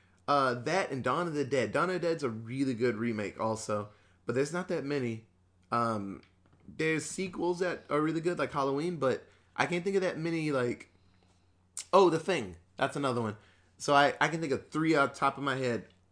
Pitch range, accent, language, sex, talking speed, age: 100-155 Hz, American, English, male, 210 wpm, 20-39